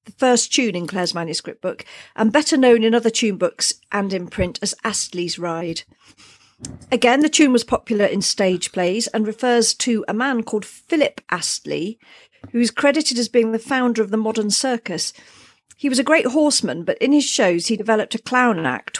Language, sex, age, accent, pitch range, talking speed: English, female, 50-69, British, 185-240 Hz, 195 wpm